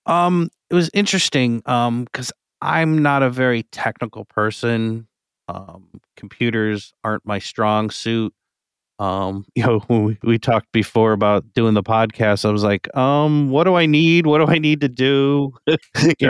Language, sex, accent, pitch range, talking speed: English, male, American, 100-120 Hz, 165 wpm